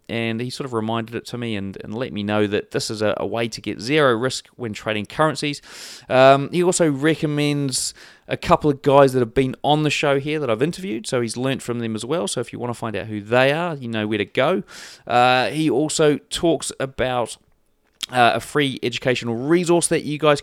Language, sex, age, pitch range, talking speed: English, male, 30-49, 115-150 Hz, 230 wpm